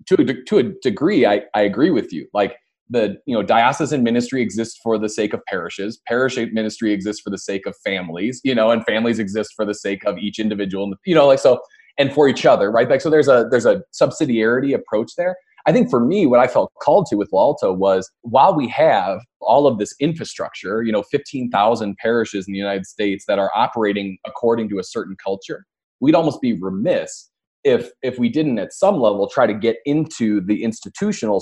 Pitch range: 105-120 Hz